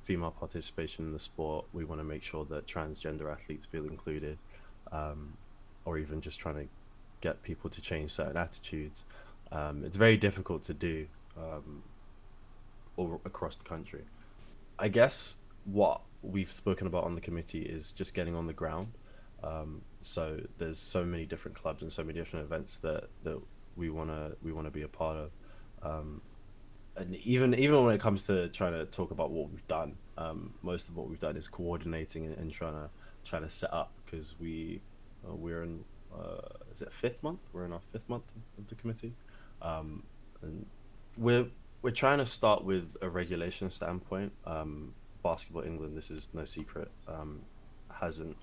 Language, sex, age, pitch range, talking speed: English, male, 20-39, 80-100 Hz, 175 wpm